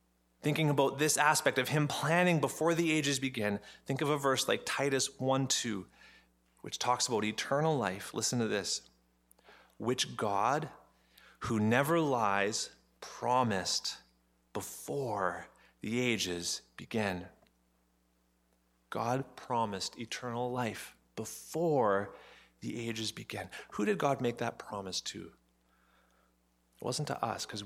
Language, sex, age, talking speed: English, male, 30-49, 120 wpm